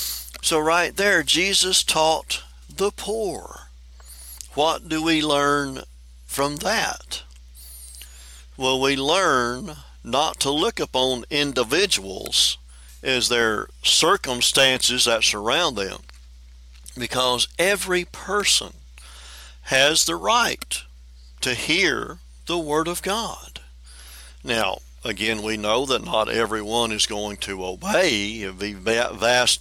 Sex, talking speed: male, 105 wpm